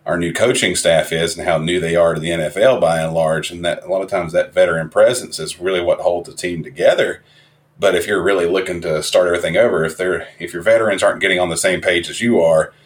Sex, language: male, English